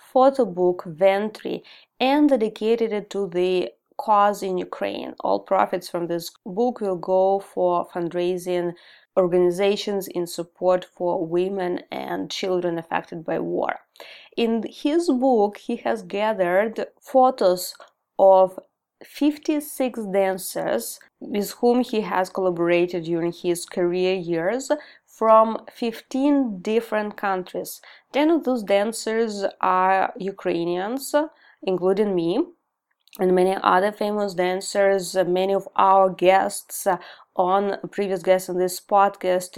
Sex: female